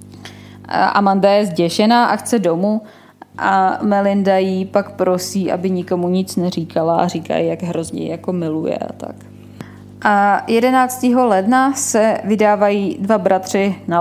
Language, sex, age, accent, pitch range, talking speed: Czech, female, 20-39, native, 180-205 Hz, 135 wpm